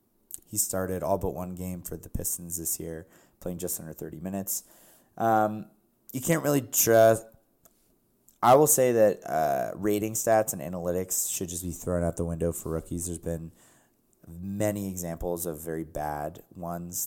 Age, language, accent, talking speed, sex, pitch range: 20-39, English, American, 165 wpm, male, 80-105 Hz